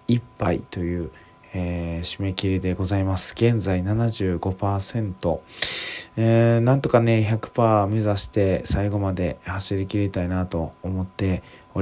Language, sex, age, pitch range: Japanese, male, 20-39, 90-110 Hz